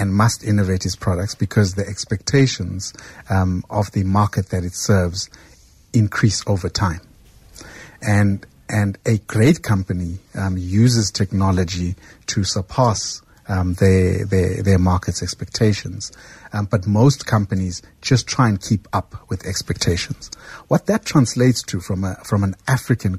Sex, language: male, English